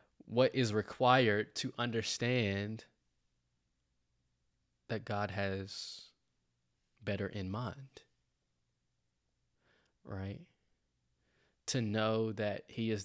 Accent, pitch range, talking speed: American, 90-110 Hz, 80 wpm